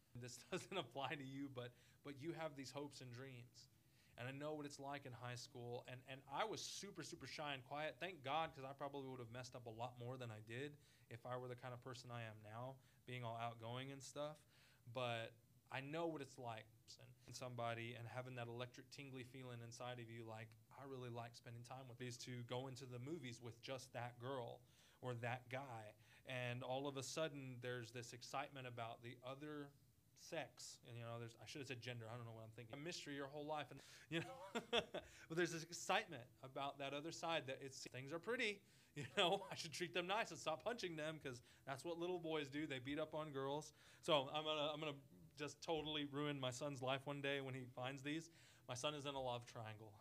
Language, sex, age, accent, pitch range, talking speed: English, male, 20-39, American, 120-145 Hz, 230 wpm